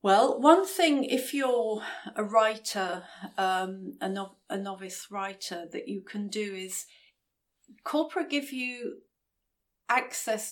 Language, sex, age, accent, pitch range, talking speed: English, female, 40-59, British, 190-235 Hz, 125 wpm